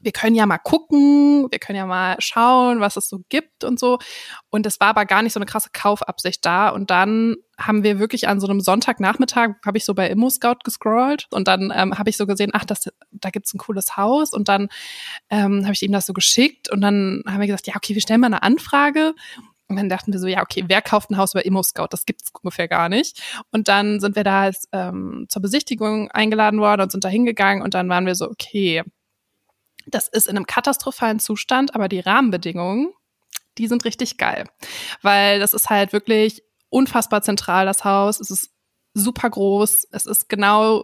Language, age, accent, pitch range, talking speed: German, 20-39, German, 195-230 Hz, 215 wpm